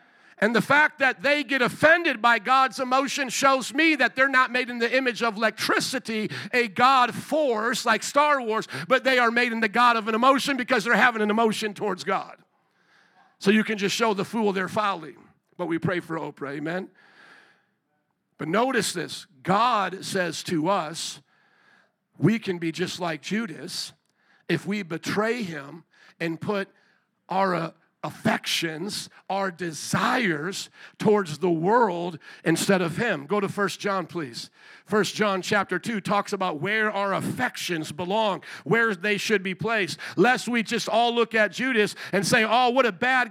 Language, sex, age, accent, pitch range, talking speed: English, male, 50-69, American, 195-255 Hz, 170 wpm